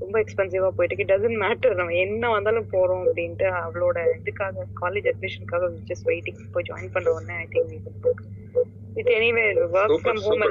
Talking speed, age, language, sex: 165 wpm, 20-39, Tamil, female